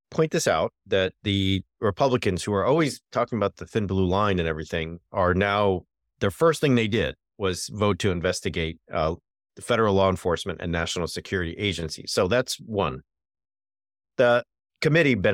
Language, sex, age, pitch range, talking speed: English, male, 40-59, 85-105 Hz, 165 wpm